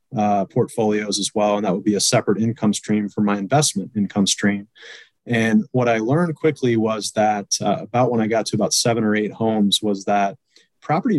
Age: 30-49